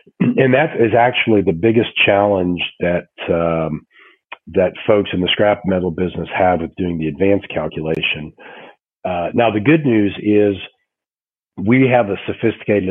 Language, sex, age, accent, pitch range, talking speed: English, male, 40-59, American, 85-100 Hz, 150 wpm